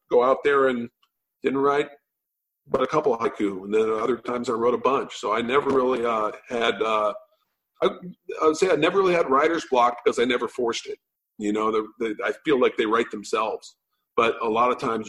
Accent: American